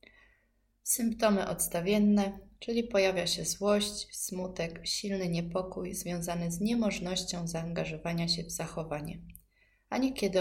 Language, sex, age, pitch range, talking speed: Polish, female, 20-39, 165-195 Hz, 105 wpm